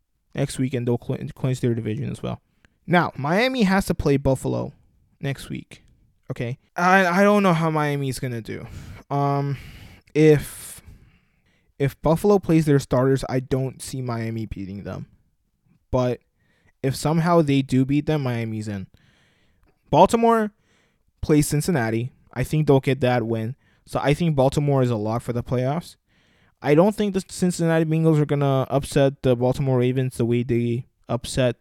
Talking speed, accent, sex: 160 wpm, American, male